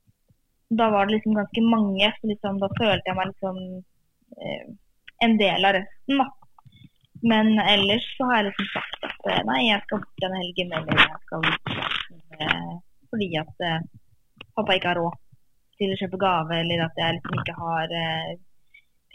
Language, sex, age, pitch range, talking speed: English, female, 20-39, 185-225 Hz, 160 wpm